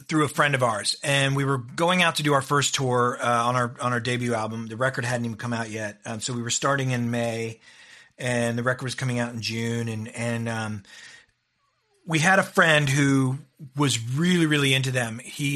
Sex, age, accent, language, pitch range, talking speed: male, 40-59, American, English, 120-140 Hz, 225 wpm